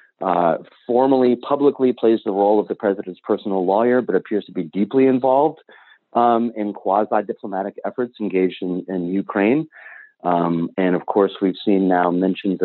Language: English